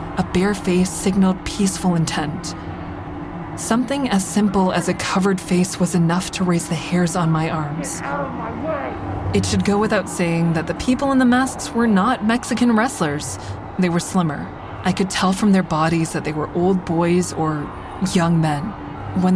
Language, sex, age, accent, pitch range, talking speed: English, female, 20-39, American, 160-190 Hz, 170 wpm